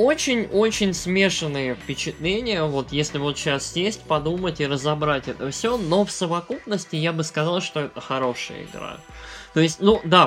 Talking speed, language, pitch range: 160 wpm, Russian, 135-180 Hz